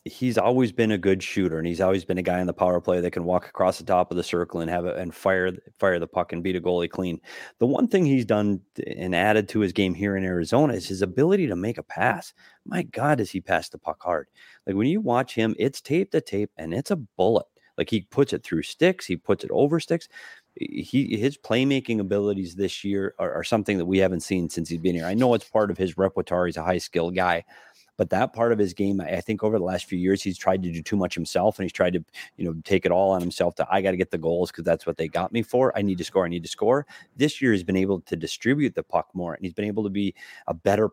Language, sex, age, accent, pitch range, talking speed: English, male, 30-49, American, 90-115 Hz, 280 wpm